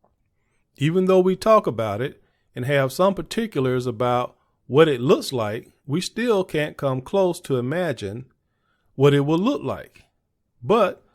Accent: American